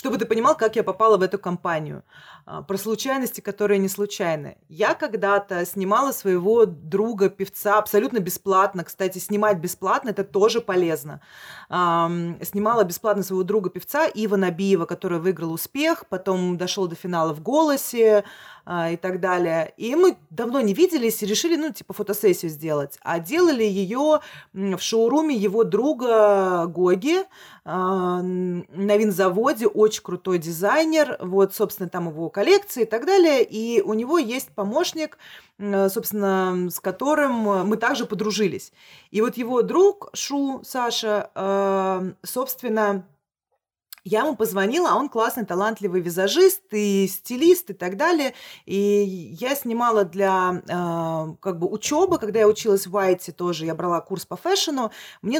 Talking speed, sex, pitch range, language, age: 135 wpm, female, 185-230 Hz, Russian, 30-49